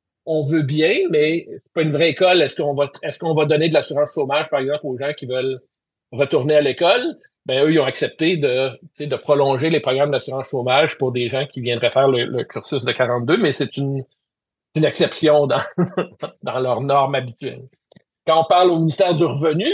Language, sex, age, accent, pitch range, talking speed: French, male, 50-69, Canadian, 135-165 Hz, 205 wpm